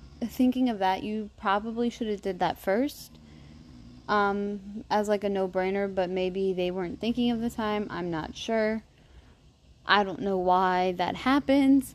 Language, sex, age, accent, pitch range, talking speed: English, female, 20-39, American, 185-220 Hz, 160 wpm